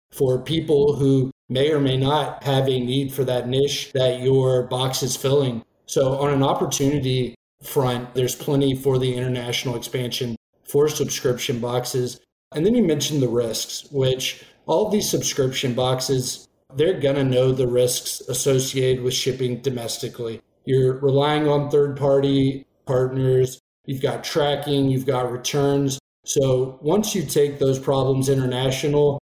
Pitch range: 130-140 Hz